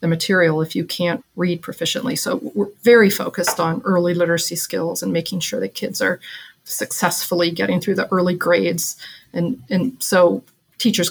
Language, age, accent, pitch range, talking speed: English, 40-59, American, 170-200 Hz, 160 wpm